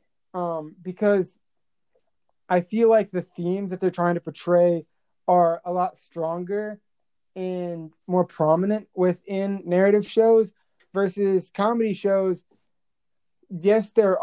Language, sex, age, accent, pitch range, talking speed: English, male, 20-39, American, 165-195 Hz, 115 wpm